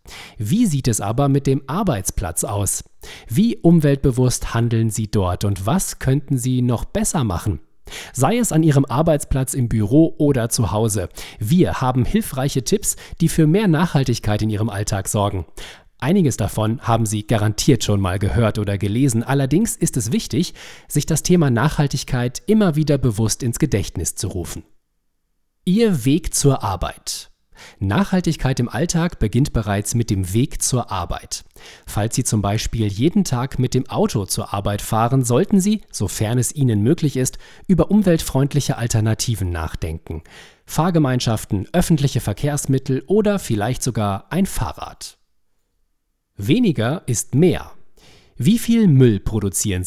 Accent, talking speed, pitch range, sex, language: German, 145 wpm, 105-155 Hz, male, German